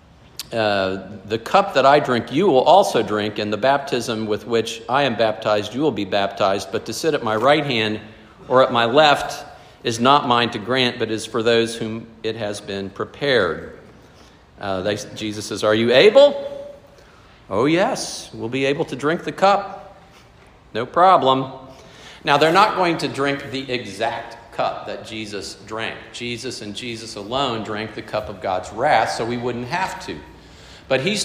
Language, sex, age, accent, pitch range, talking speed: English, male, 50-69, American, 110-140 Hz, 180 wpm